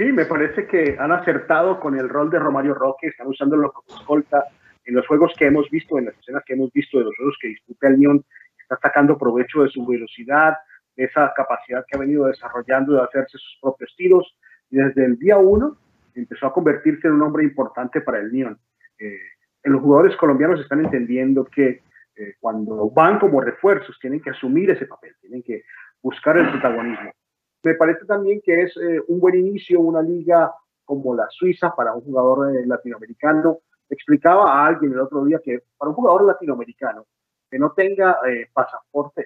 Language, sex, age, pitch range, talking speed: Spanish, male, 40-59, 130-160 Hz, 195 wpm